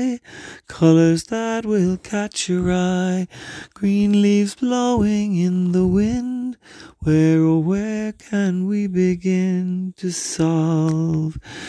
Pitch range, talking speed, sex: 165-205 Hz, 110 wpm, male